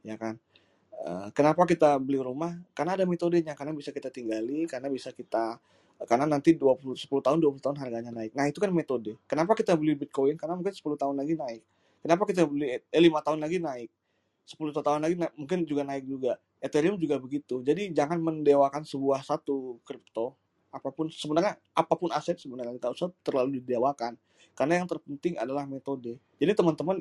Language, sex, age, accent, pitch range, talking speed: Indonesian, male, 20-39, native, 125-155 Hz, 180 wpm